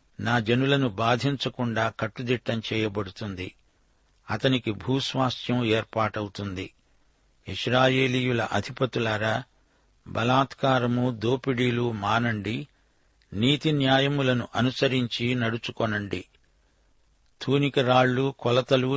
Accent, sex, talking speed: native, male, 60 wpm